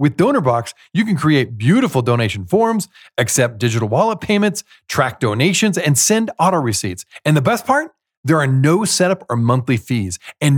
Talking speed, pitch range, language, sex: 170 wpm, 120-195 Hz, English, male